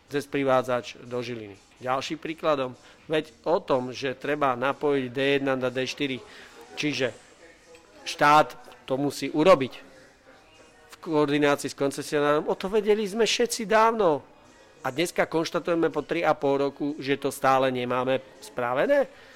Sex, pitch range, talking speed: male, 130-155 Hz, 130 wpm